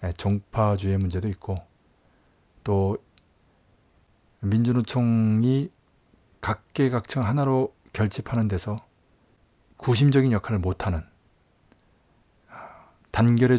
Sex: male